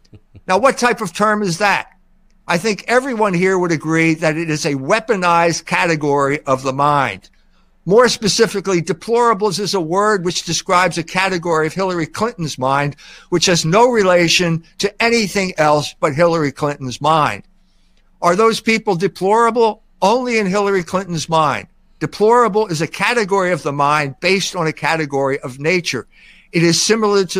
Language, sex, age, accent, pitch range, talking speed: English, male, 60-79, American, 160-200 Hz, 160 wpm